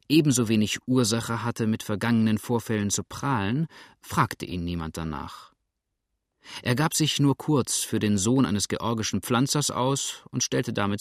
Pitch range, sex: 105-130 Hz, male